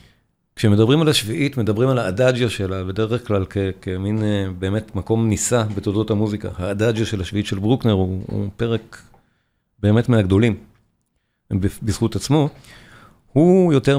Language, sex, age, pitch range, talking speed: Hebrew, male, 40-59, 100-130 Hz, 135 wpm